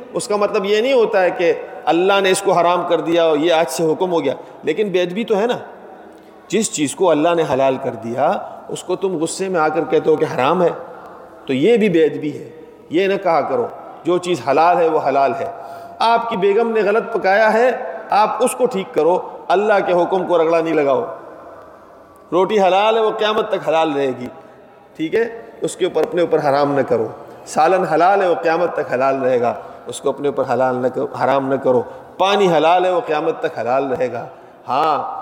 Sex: male